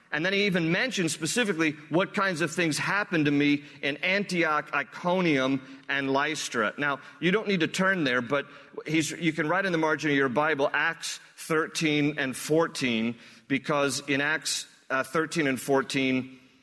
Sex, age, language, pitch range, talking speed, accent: male, 40-59, English, 135-160 Hz, 165 wpm, American